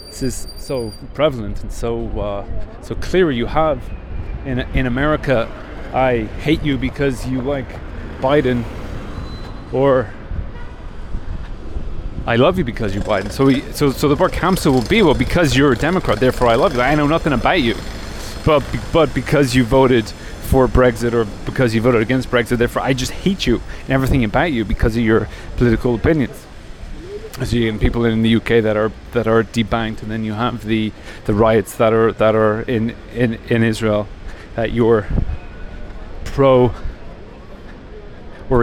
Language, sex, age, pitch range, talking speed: English, male, 30-49, 110-130 Hz, 170 wpm